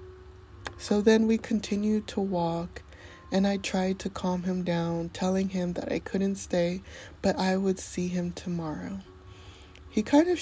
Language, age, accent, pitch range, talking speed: English, 20-39, American, 170-195 Hz, 160 wpm